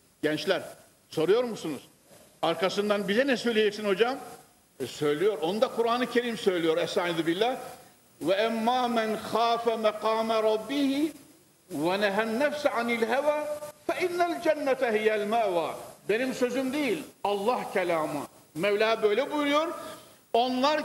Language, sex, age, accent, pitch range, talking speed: Turkish, male, 50-69, native, 205-275 Hz, 110 wpm